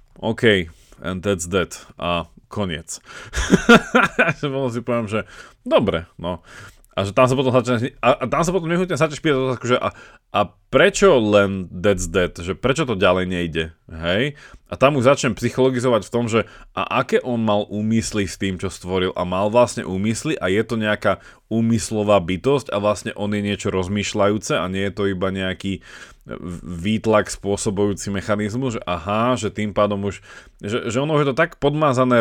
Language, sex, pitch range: Slovak, male, 95-115 Hz